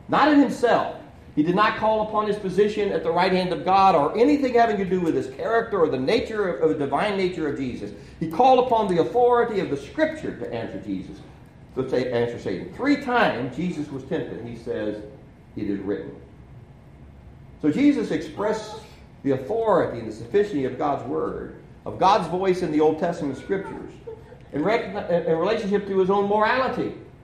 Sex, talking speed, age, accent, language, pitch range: male, 190 wpm, 50-69, American, English, 140-215 Hz